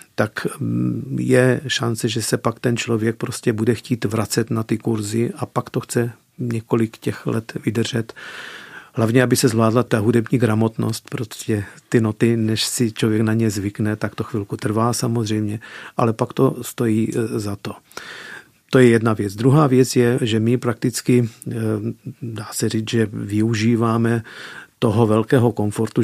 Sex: male